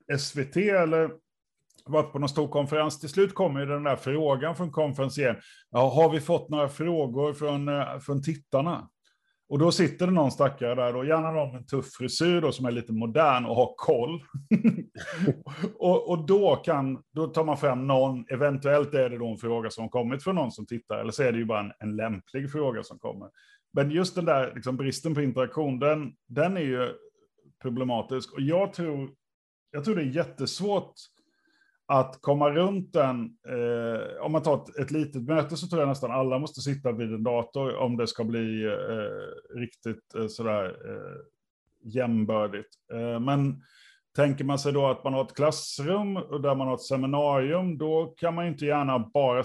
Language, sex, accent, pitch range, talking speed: Swedish, male, native, 125-160 Hz, 190 wpm